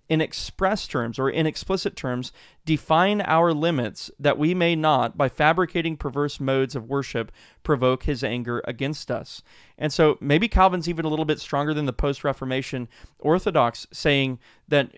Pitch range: 125-155 Hz